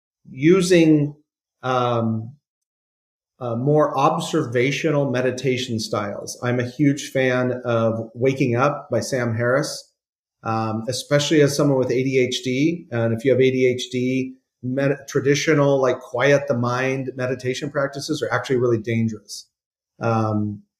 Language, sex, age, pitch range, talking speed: English, male, 40-59, 120-140 Hz, 120 wpm